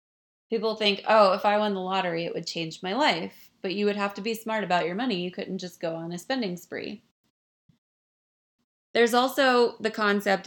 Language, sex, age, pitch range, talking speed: English, female, 20-39, 175-215 Hz, 200 wpm